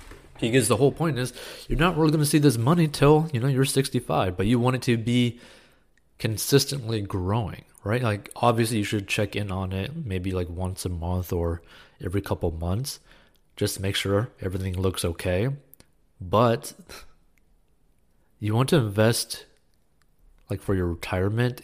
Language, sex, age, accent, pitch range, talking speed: English, male, 30-49, American, 95-125 Hz, 165 wpm